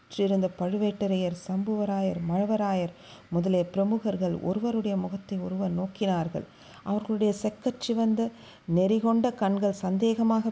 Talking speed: 85 wpm